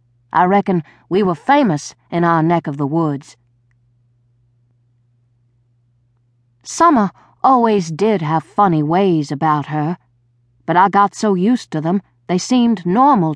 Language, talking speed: English, 130 wpm